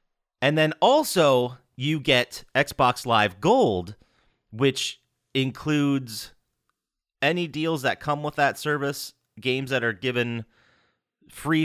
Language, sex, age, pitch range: English, male, 30-49, 105-135 Hz